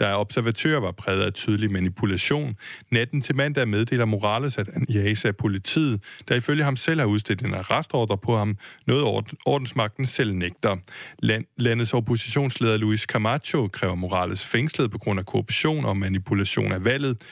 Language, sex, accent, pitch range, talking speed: Danish, male, native, 105-135 Hz, 160 wpm